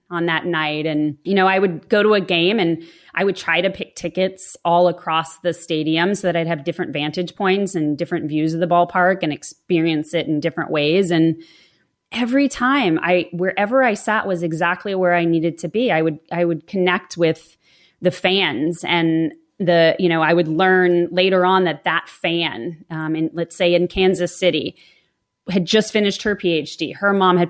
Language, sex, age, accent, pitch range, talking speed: English, female, 20-39, American, 165-190 Hz, 200 wpm